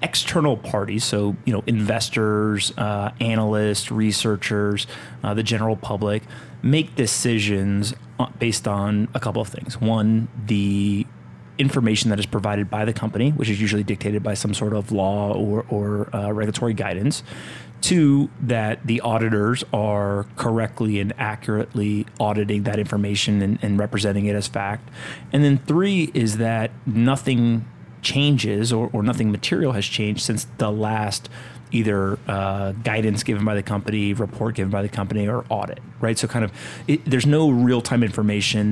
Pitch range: 105-120 Hz